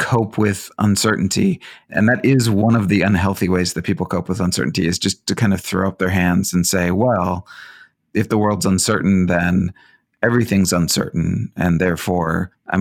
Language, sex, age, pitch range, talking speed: English, male, 30-49, 90-105 Hz, 180 wpm